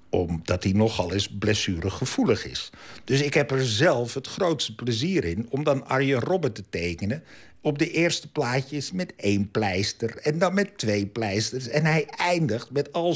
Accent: Dutch